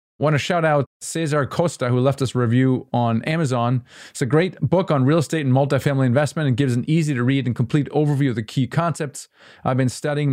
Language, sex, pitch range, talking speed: English, male, 125-150 Hz, 225 wpm